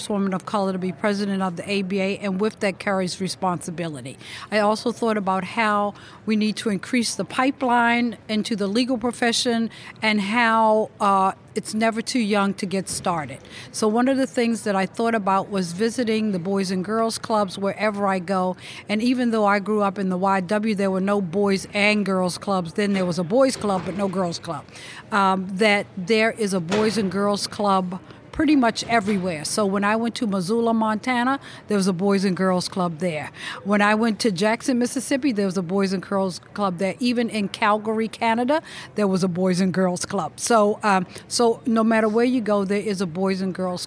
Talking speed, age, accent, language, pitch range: 205 wpm, 50-69, American, English, 190-225 Hz